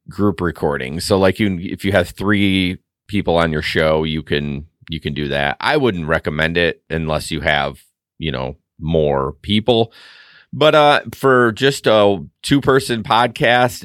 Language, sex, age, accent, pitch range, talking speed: English, male, 40-59, American, 85-115 Hz, 165 wpm